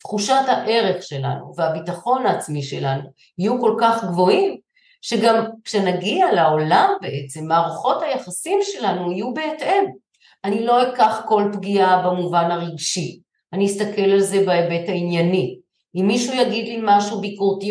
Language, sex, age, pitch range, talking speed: Hebrew, female, 50-69, 175-230 Hz, 130 wpm